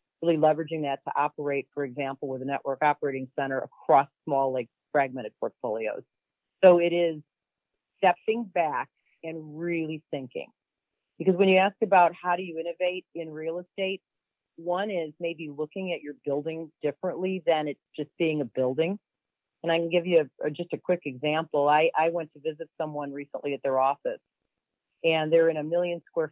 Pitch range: 145-175 Hz